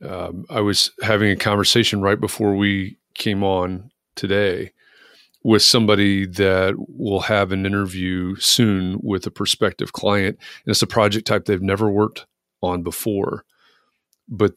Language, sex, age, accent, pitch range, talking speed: English, male, 40-59, American, 95-115 Hz, 145 wpm